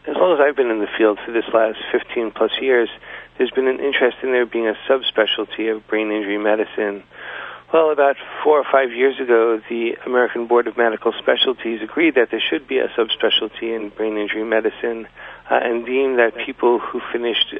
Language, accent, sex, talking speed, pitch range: English, American, male, 195 wpm, 110-120 Hz